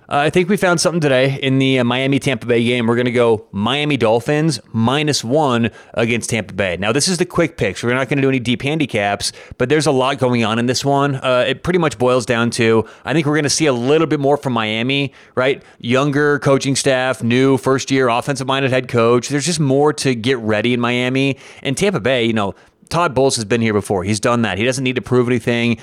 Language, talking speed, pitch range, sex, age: English, 240 wpm, 115-135 Hz, male, 30-49